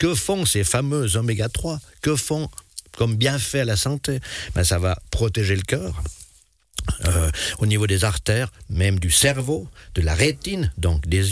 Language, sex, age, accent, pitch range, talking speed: French, male, 60-79, French, 90-110 Hz, 165 wpm